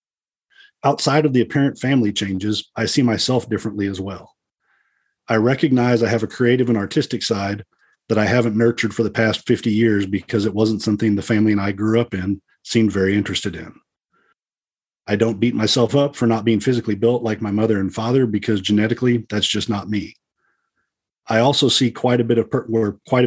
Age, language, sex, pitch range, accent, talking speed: 40-59, English, male, 105-120 Hz, American, 195 wpm